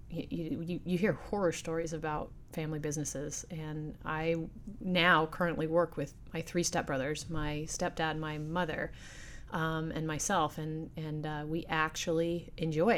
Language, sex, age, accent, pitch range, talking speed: English, female, 30-49, American, 150-170 Hz, 150 wpm